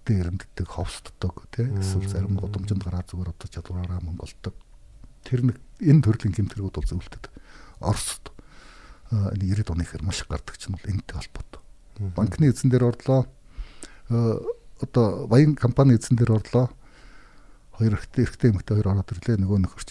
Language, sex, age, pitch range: Korean, male, 60-79, 90-115 Hz